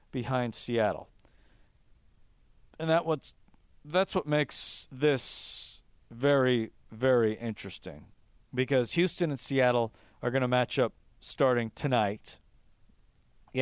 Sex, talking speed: male, 105 wpm